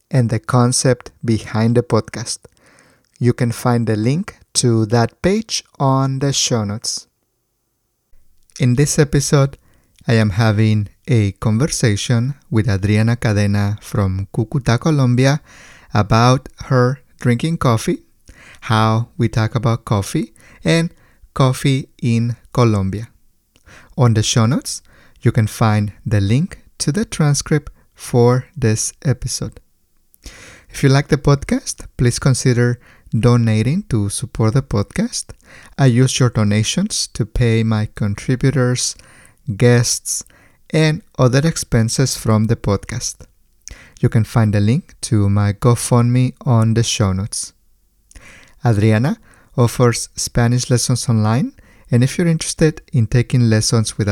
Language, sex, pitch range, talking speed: English, male, 110-130 Hz, 125 wpm